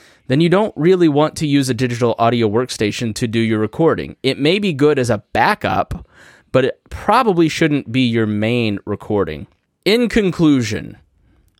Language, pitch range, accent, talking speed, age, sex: English, 110-145 Hz, American, 165 wpm, 20-39, male